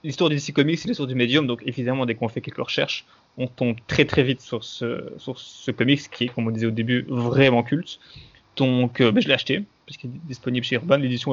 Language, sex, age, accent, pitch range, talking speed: French, male, 20-39, French, 125-155 Hz, 250 wpm